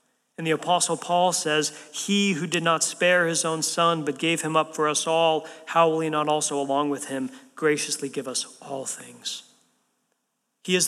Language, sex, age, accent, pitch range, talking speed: English, male, 40-59, American, 140-175 Hz, 195 wpm